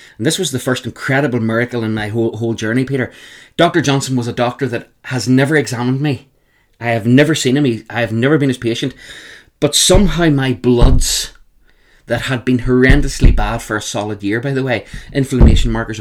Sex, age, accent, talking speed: male, 20-39, Irish, 200 wpm